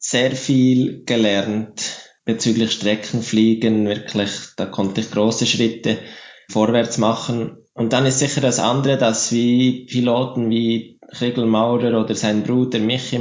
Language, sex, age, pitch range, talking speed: German, male, 20-39, 110-125 Hz, 130 wpm